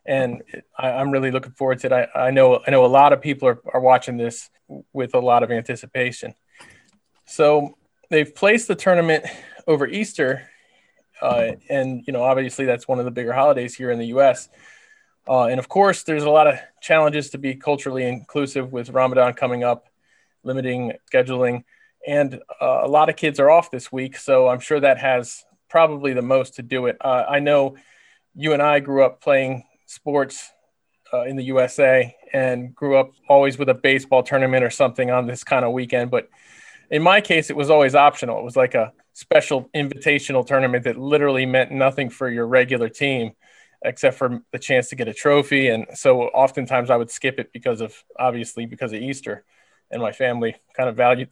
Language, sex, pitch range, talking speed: English, male, 125-145 Hz, 195 wpm